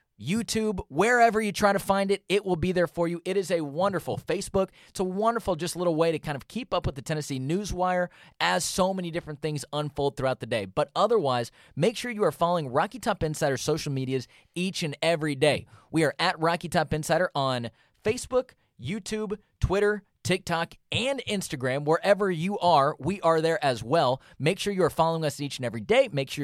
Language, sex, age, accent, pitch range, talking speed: English, male, 30-49, American, 140-190 Hz, 205 wpm